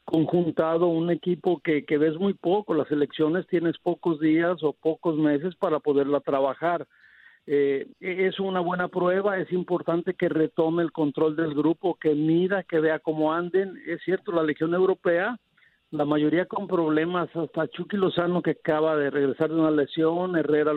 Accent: Mexican